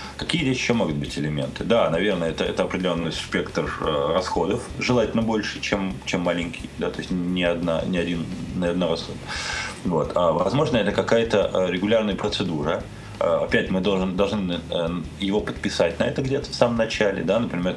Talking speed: 155 wpm